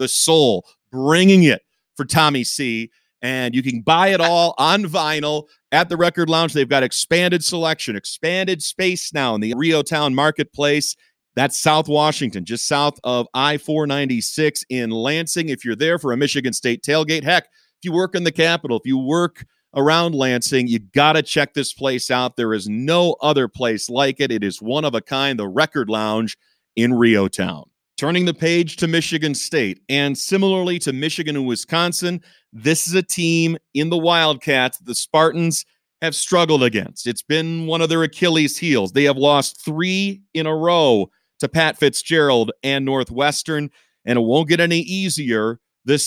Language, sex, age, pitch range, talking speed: English, male, 40-59, 130-165 Hz, 180 wpm